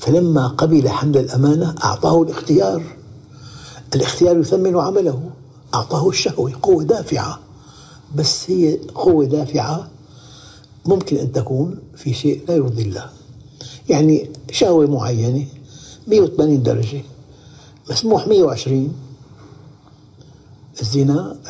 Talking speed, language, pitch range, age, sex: 95 wpm, Arabic, 130-155 Hz, 60-79, male